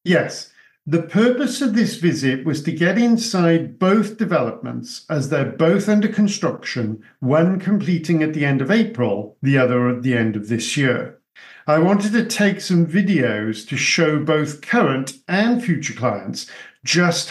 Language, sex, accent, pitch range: English, male, British, 130-185 Hz